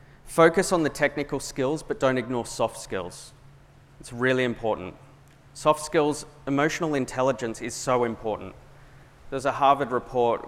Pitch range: 115-140 Hz